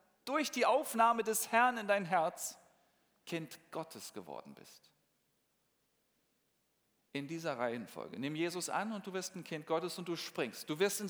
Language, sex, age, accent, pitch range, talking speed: German, male, 40-59, German, 140-225 Hz, 160 wpm